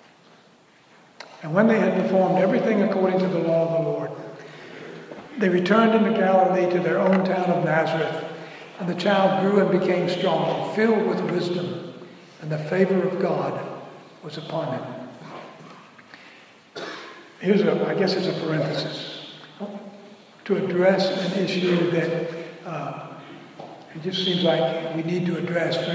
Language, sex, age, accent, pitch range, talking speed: English, male, 60-79, American, 165-190 Hz, 145 wpm